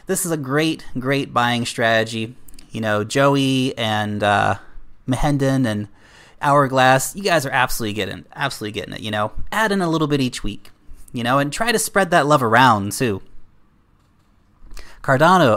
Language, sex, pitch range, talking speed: English, male, 105-140 Hz, 165 wpm